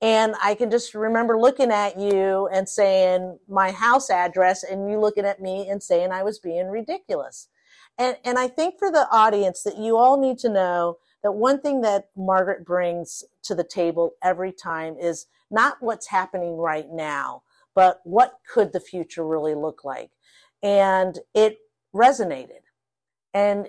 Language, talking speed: English, 165 wpm